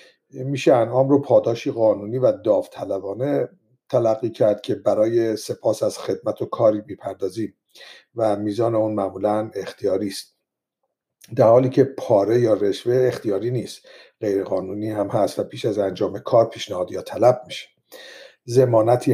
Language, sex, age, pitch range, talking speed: Persian, male, 50-69, 110-145 Hz, 135 wpm